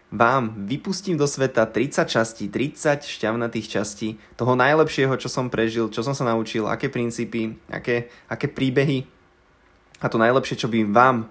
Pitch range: 115-140 Hz